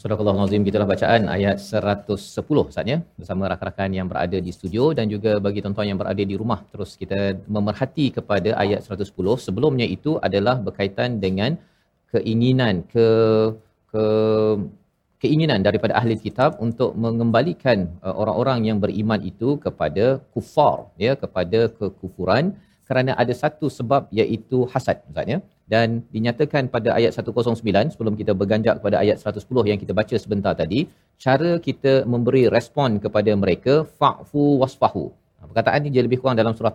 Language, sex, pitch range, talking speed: Malayalam, male, 100-125 Hz, 150 wpm